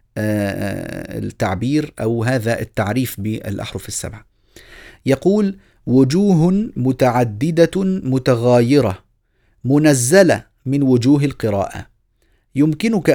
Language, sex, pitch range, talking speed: Arabic, male, 110-155 Hz, 70 wpm